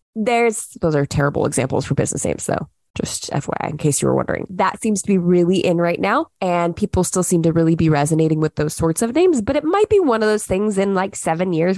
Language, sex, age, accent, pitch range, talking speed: English, female, 20-39, American, 165-230 Hz, 250 wpm